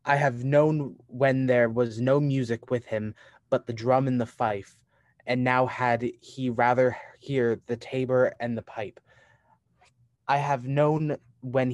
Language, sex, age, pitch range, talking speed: English, male, 20-39, 120-135 Hz, 160 wpm